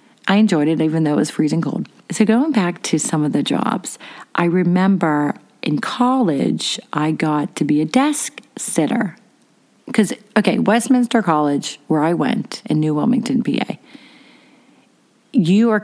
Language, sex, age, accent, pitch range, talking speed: English, female, 40-59, American, 160-230 Hz, 155 wpm